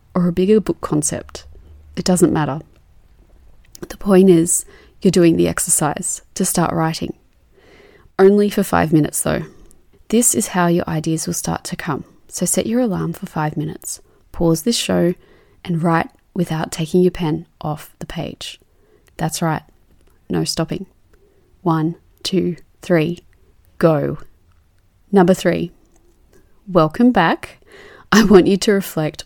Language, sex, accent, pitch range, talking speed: English, female, Australian, 160-195 Hz, 140 wpm